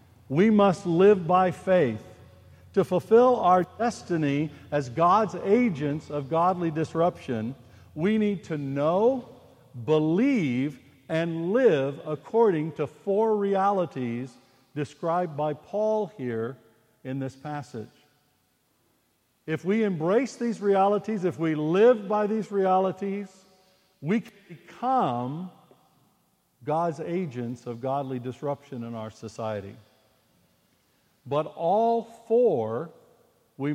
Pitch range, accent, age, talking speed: 130-180 Hz, American, 60-79, 105 wpm